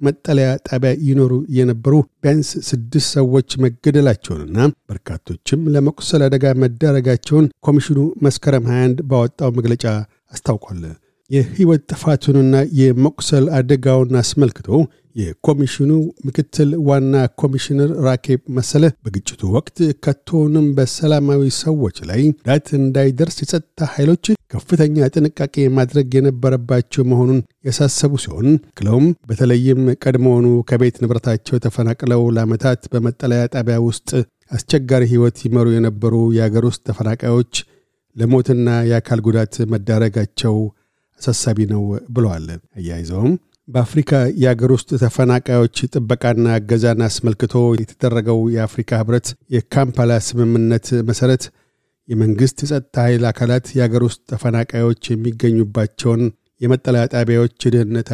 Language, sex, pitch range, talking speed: Amharic, male, 115-140 Hz, 95 wpm